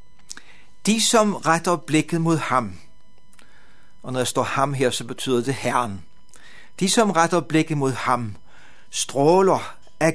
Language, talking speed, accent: Danish, 140 wpm, native